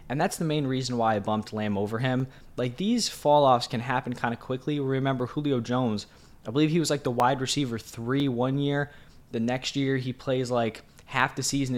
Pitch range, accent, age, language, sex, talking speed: 115-140 Hz, American, 10-29, English, male, 220 wpm